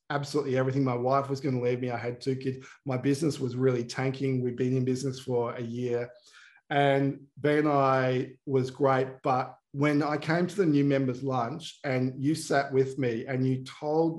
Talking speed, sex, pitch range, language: 200 wpm, male, 125-145 Hz, English